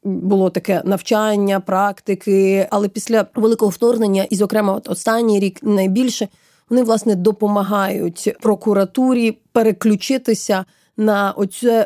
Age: 20-39